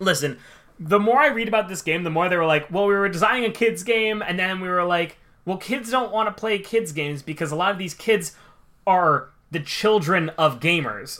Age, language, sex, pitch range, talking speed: 20-39, English, male, 145-195 Hz, 235 wpm